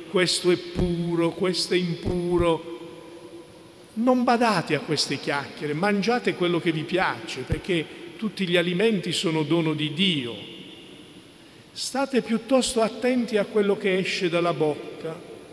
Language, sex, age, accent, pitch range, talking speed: Italian, male, 50-69, native, 150-190 Hz, 130 wpm